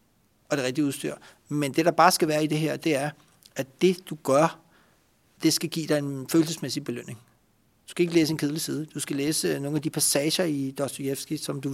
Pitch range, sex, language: 145-180 Hz, male, Danish